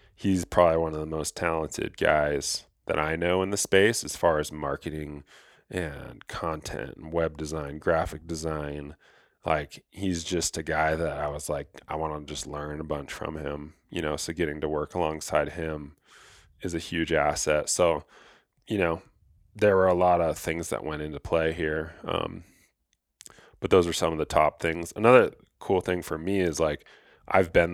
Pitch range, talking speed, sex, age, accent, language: 75-85 Hz, 185 wpm, male, 20-39, American, English